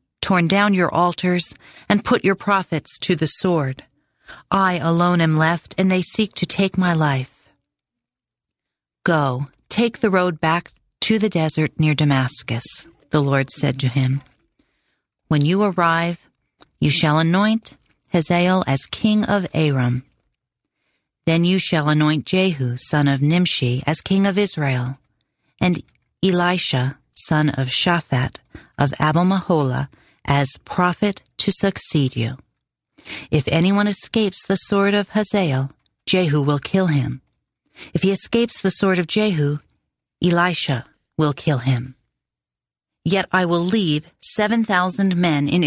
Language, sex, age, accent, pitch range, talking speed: English, female, 40-59, American, 145-190 Hz, 135 wpm